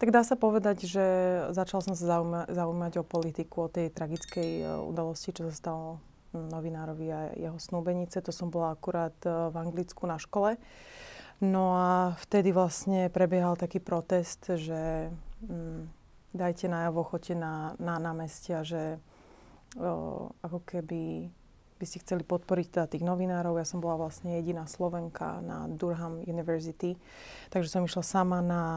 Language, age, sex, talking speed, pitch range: Slovak, 20-39, female, 140 wpm, 165-180 Hz